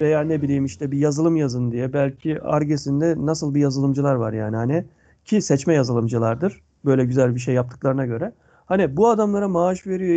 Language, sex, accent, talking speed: Turkish, male, native, 175 wpm